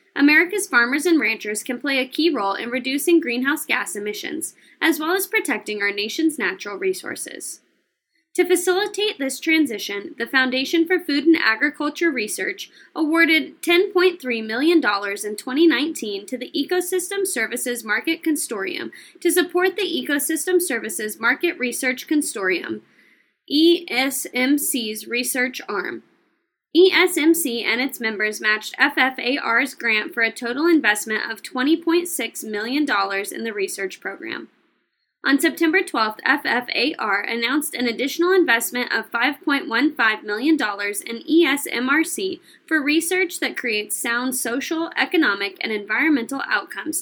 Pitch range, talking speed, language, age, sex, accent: 235-335 Hz, 125 wpm, English, 20-39, female, American